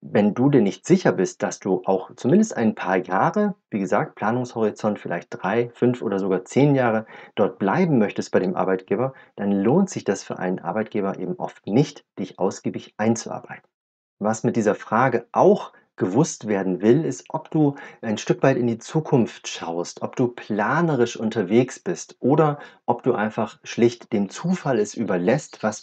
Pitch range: 100-140 Hz